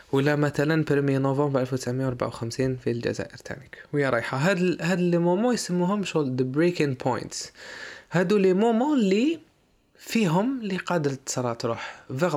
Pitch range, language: 125-170 Hz, Arabic